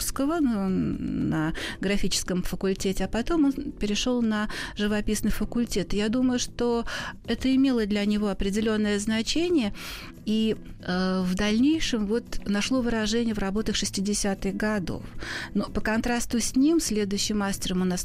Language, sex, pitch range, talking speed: Russian, female, 190-235 Hz, 130 wpm